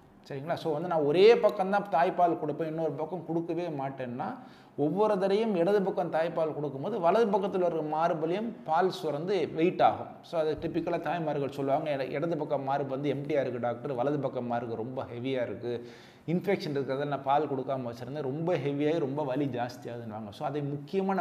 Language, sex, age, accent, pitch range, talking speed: Tamil, male, 30-49, native, 145-190 Hz, 165 wpm